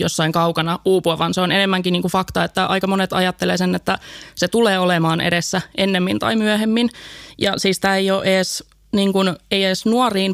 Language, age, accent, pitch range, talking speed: Finnish, 20-39, native, 180-200 Hz, 195 wpm